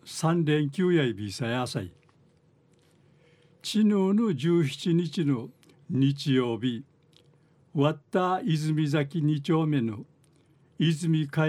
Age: 60-79